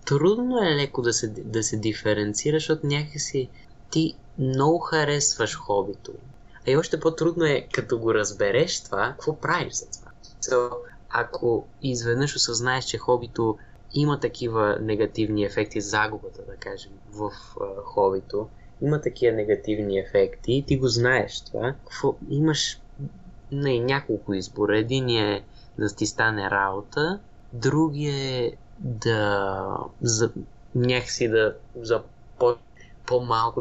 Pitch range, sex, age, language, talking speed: 110-140 Hz, male, 20-39, Bulgarian, 125 wpm